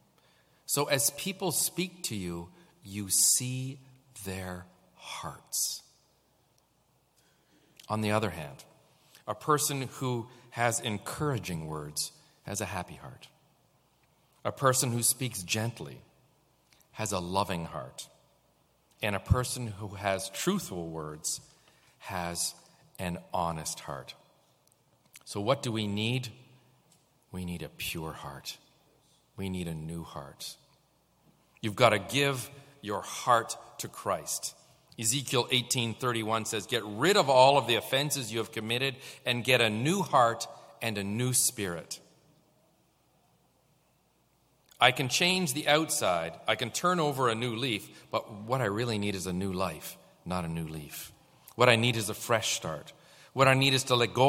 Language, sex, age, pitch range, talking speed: English, male, 40-59, 95-130 Hz, 140 wpm